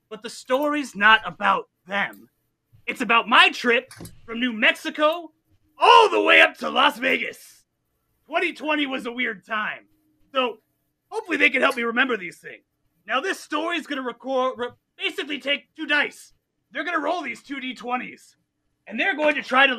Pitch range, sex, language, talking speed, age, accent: 235-295 Hz, male, English, 175 wpm, 30-49, American